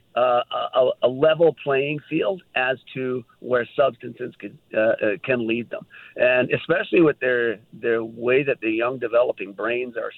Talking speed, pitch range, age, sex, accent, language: 165 wpm, 125-160 Hz, 50-69, male, American, English